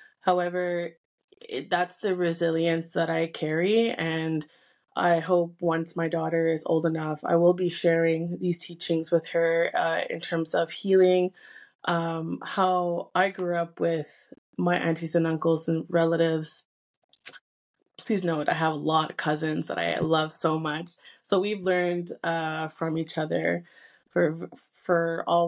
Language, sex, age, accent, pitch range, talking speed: English, female, 20-39, American, 160-175 Hz, 150 wpm